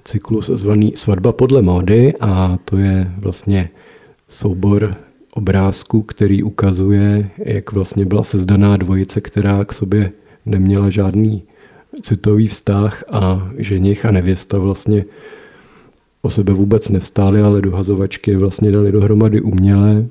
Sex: male